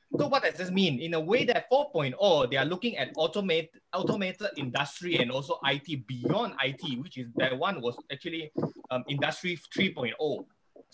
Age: 20-39